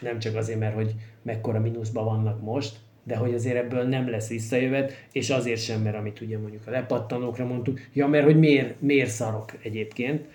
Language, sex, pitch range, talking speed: Hungarian, male, 110-130 Hz, 185 wpm